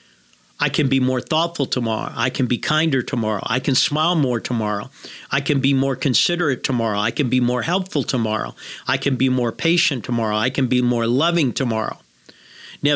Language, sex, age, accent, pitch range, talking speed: English, male, 50-69, American, 125-155 Hz, 190 wpm